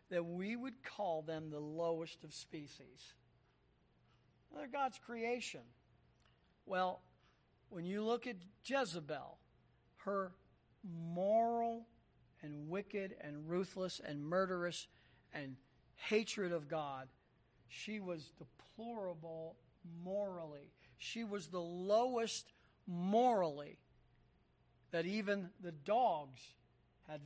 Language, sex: English, male